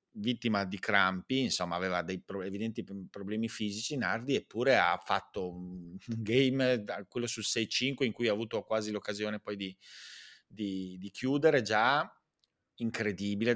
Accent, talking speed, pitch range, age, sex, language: native, 145 wpm, 100-125 Hz, 30-49, male, Italian